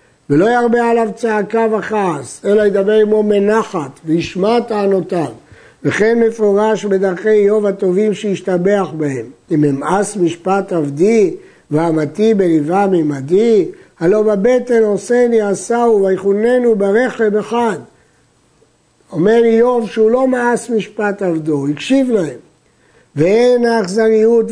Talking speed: 110 wpm